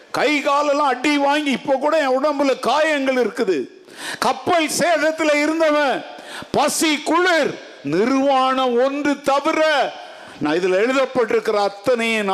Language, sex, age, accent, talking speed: Tamil, male, 50-69, native, 95 wpm